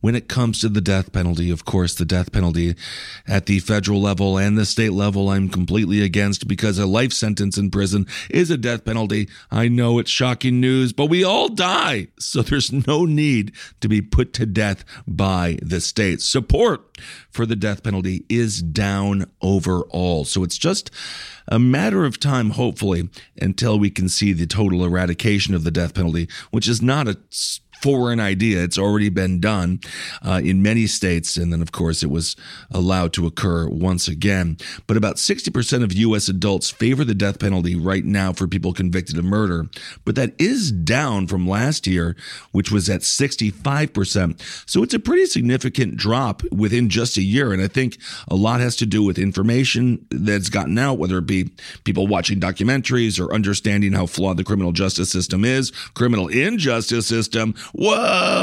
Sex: male